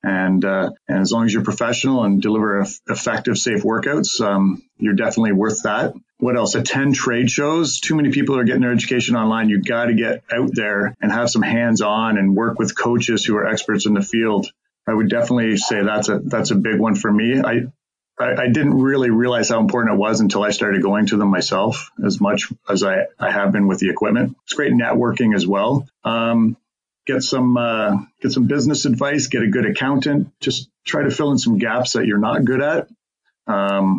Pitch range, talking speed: 105-125 Hz, 215 wpm